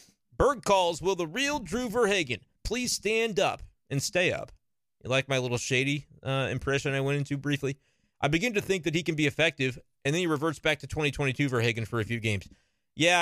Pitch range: 120-155 Hz